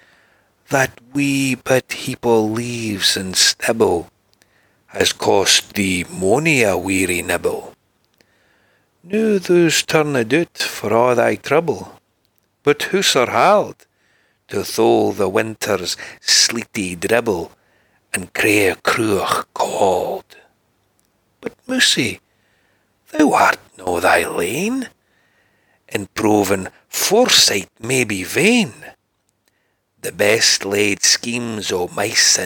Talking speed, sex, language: 105 wpm, male, English